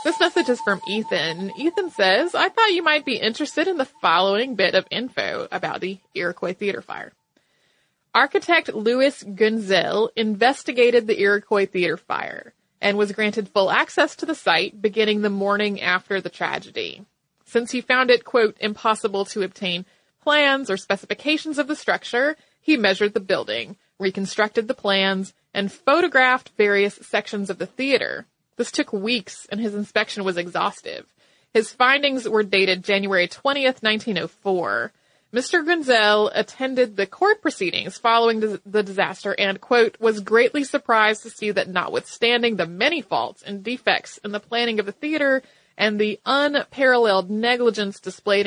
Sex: female